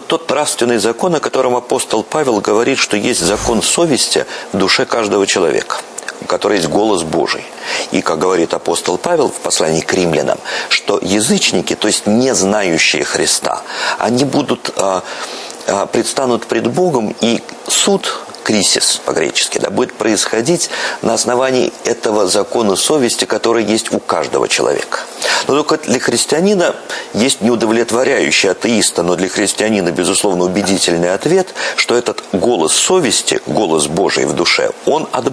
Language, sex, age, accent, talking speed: Russian, male, 50-69, native, 140 wpm